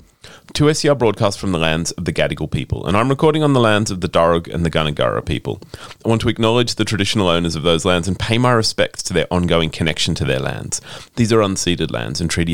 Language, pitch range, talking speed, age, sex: English, 90-125 Hz, 240 wpm, 30-49, male